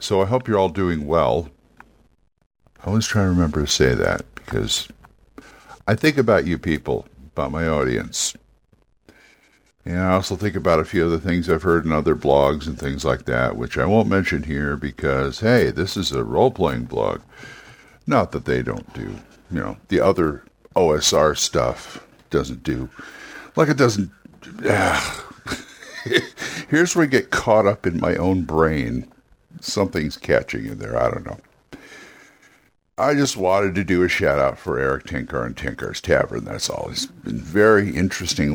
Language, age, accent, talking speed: English, 60-79, American, 165 wpm